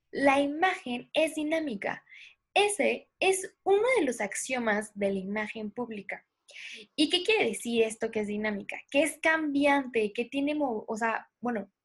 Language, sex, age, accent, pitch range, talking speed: Spanish, female, 10-29, Mexican, 200-275 Hz, 150 wpm